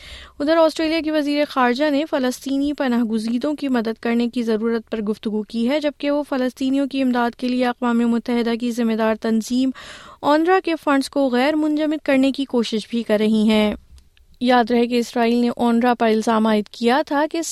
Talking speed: 190 wpm